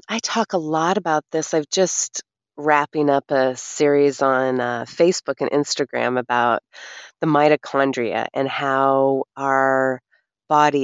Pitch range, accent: 130-155 Hz, American